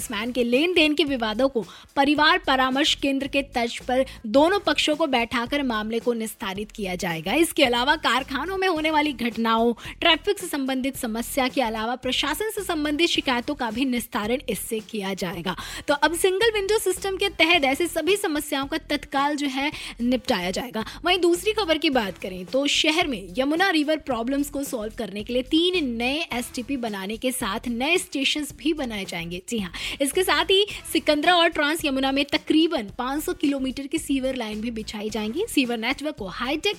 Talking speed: 125 wpm